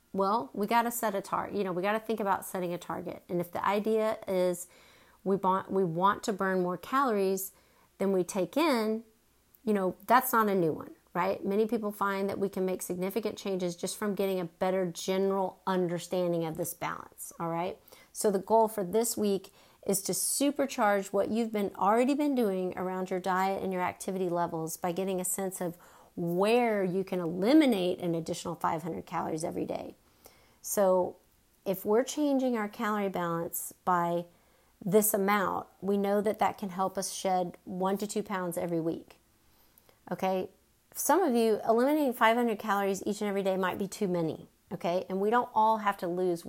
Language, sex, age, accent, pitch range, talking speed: English, female, 40-59, American, 180-215 Hz, 185 wpm